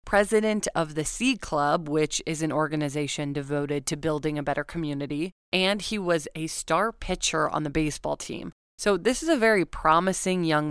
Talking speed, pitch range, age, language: 180 wpm, 155-190 Hz, 20-39, English